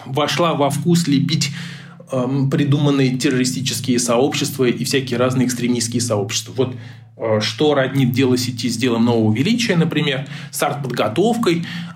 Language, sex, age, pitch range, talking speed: Russian, male, 20-39, 125-150 Hz, 130 wpm